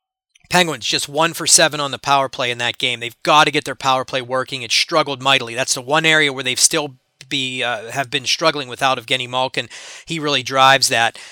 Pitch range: 130-150 Hz